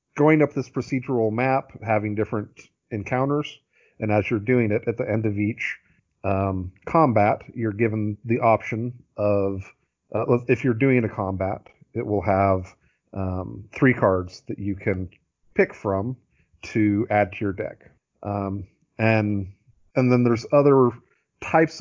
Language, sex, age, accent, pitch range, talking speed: English, male, 40-59, American, 100-120 Hz, 150 wpm